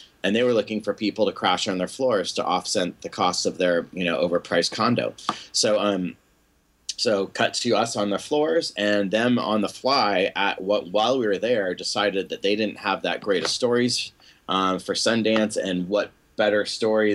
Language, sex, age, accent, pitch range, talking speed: English, male, 30-49, American, 95-110 Hz, 200 wpm